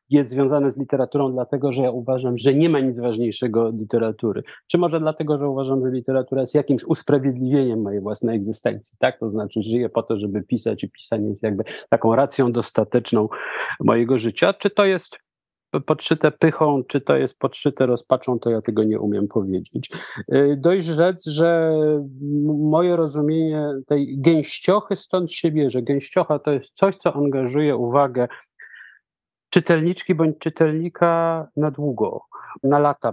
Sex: male